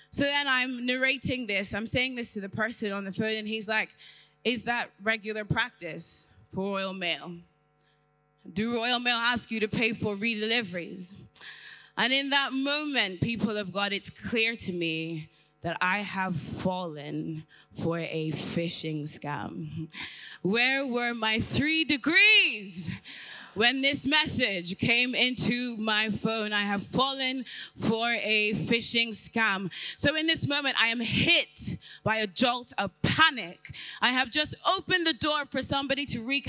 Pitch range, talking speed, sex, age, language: 200-275 Hz, 155 wpm, female, 20-39, English